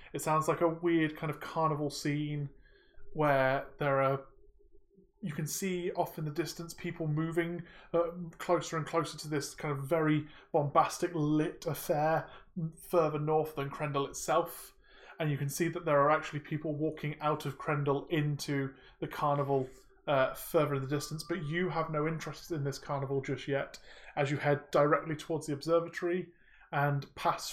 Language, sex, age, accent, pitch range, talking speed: English, male, 20-39, British, 145-170 Hz, 170 wpm